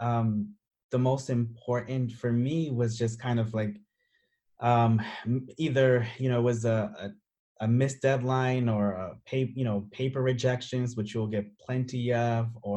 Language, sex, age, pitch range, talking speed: English, male, 20-39, 110-125 Hz, 165 wpm